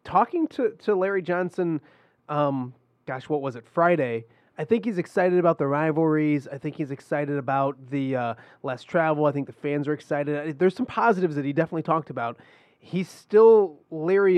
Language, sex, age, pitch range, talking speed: English, male, 30-49, 140-165 Hz, 185 wpm